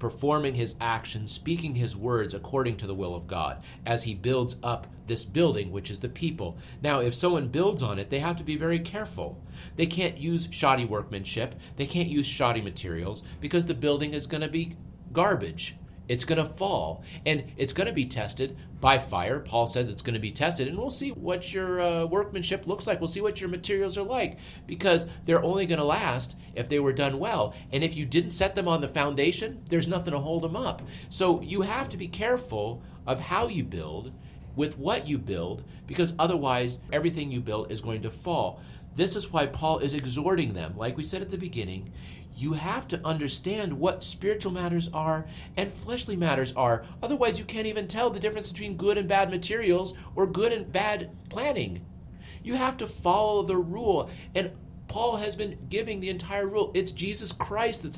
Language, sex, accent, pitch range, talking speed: English, male, American, 125-190 Hz, 200 wpm